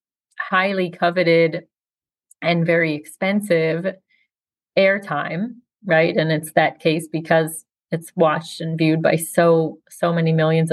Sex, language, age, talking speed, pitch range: female, English, 30-49, 115 wpm, 165-180 Hz